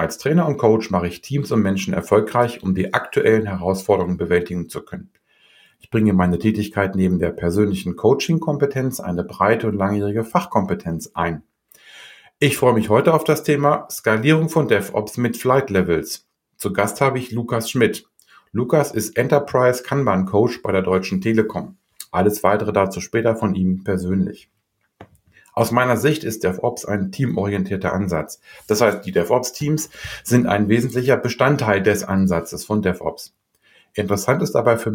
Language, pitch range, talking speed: German, 95-125 Hz, 155 wpm